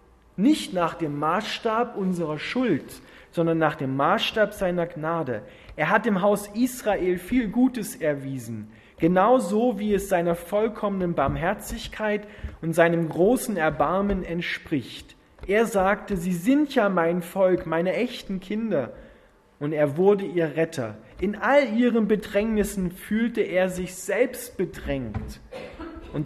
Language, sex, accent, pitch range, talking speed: German, male, German, 165-210 Hz, 130 wpm